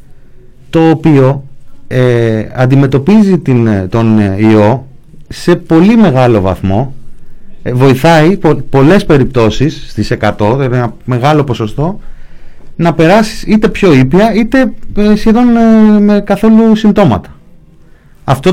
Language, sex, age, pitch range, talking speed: Greek, male, 30-49, 105-160 Hz, 110 wpm